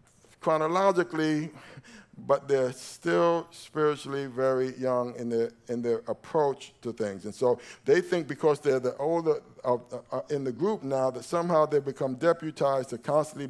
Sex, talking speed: male, 155 wpm